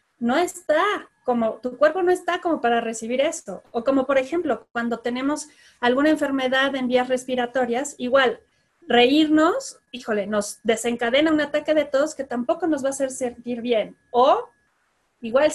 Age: 30-49